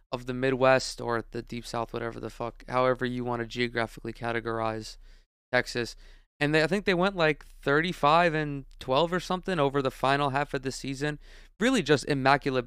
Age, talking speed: 20-39, 180 wpm